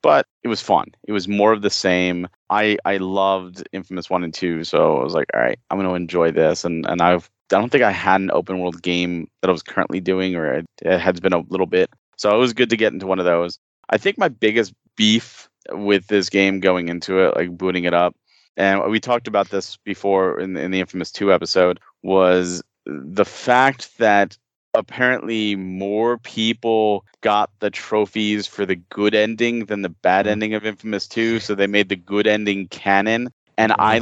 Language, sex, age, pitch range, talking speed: English, male, 30-49, 95-115 Hz, 210 wpm